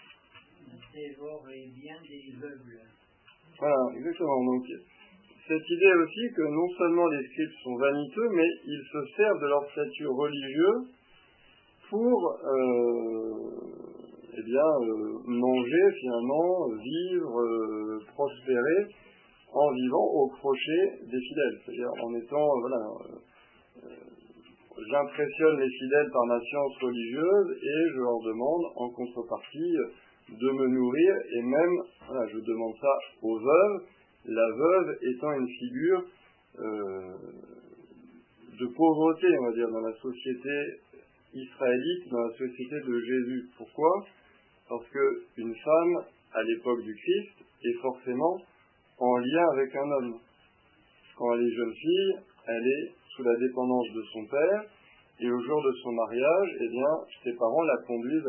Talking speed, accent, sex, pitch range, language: 130 wpm, French, male, 120-165 Hz, French